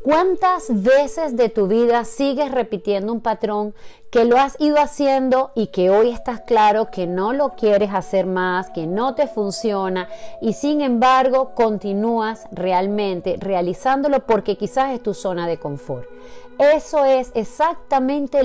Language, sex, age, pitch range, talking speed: Spanish, female, 40-59, 195-260 Hz, 145 wpm